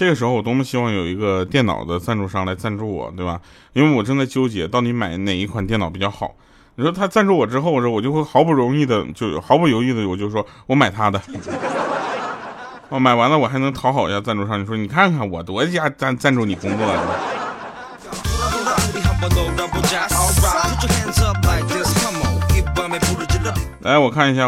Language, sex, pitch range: Chinese, male, 95-135 Hz